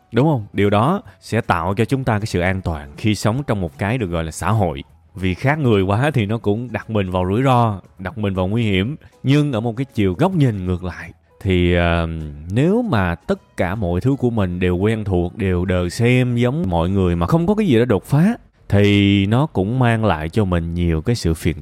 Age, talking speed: 20-39, 240 wpm